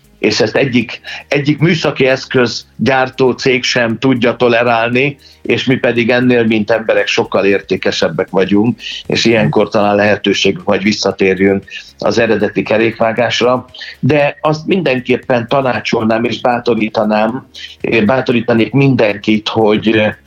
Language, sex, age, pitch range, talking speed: Hungarian, male, 60-79, 110-135 Hz, 110 wpm